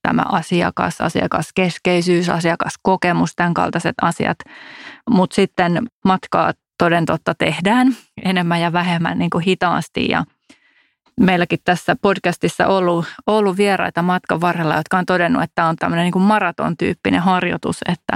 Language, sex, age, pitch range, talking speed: Finnish, female, 30-49, 175-195 Hz, 130 wpm